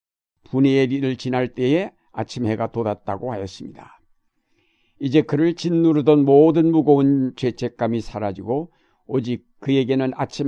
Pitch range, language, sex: 115-145 Hz, Korean, male